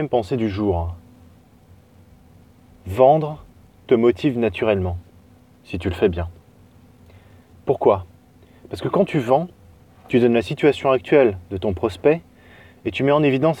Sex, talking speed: male, 135 wpm